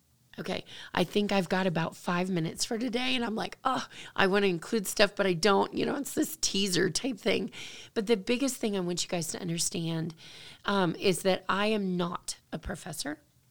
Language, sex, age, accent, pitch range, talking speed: English, female, 30-49, American, 170-205 Hz, 210 wpm